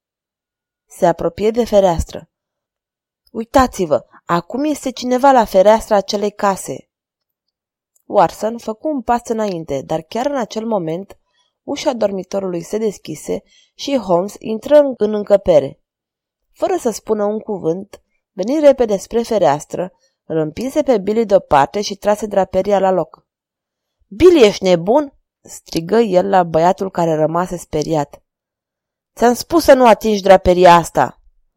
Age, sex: 20-39, female